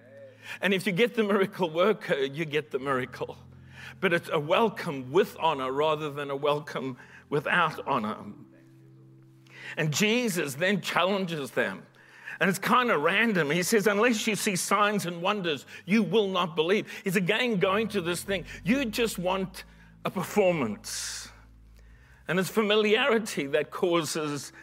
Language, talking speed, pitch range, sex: English, 150 wpm, 155-215 Hz, male